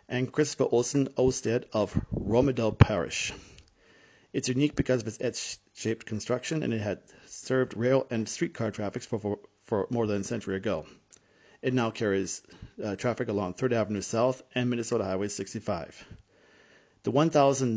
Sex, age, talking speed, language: male, 40-59, 145 wpm, English